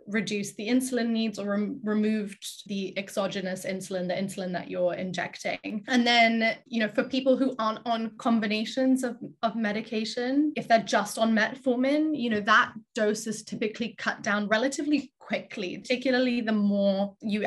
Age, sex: 20-39, female